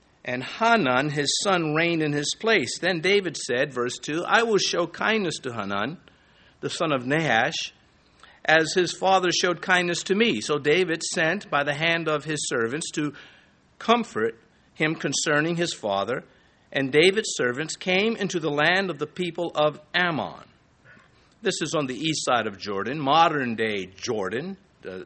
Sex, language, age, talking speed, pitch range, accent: male, English, 50-69, 165 wpm, 145-190 Hz, American